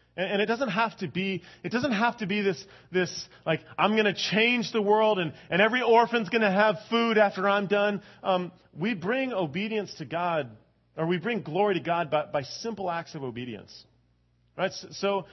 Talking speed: 205 wpm